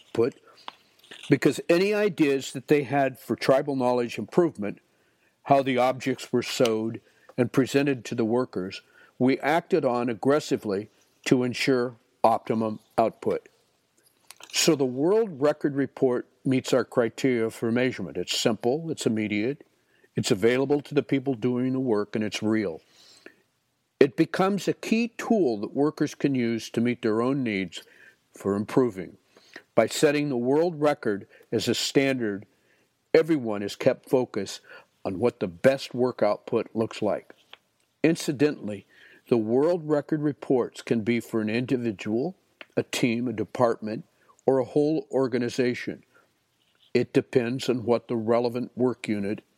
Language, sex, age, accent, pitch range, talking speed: English, male, 60-79, American, 115-145 Hz, 140 wpm